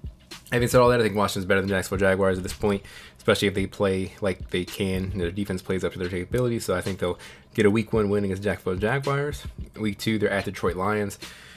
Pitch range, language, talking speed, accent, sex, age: 95-105 Hz, English, 240 wpm, American, male, 20-39